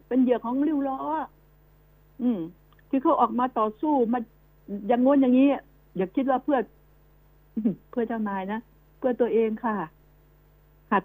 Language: Thai